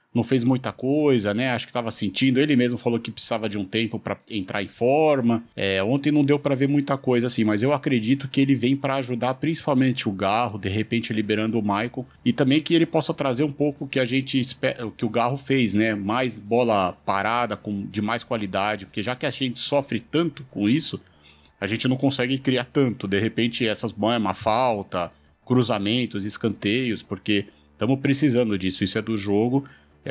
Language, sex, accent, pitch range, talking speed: Portuguese, male, Brazilian, 105-135 Hz, 205 wpm